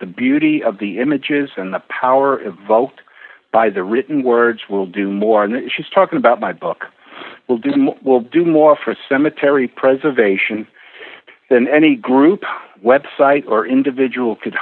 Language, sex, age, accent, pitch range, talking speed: English, male, 50-69, American, 115-150 Hz, 150 wpm